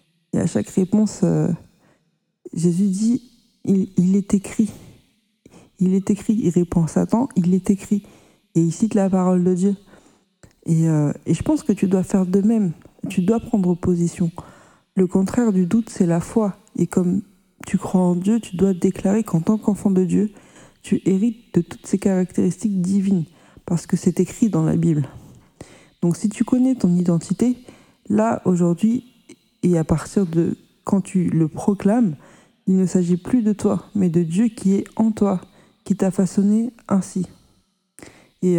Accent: French